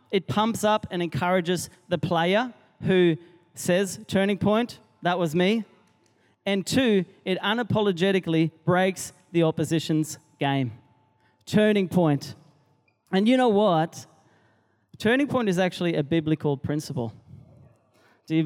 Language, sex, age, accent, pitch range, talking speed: English, male, 30-49, Australian, 160-210 Hz, 120 wpm